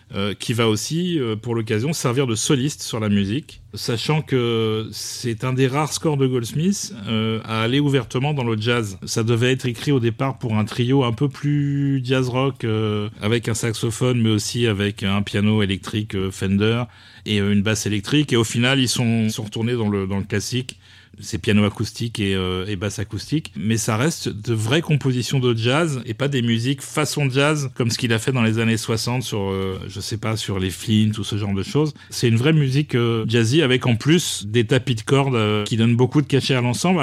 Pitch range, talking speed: 110-135 Hz, 220 wpm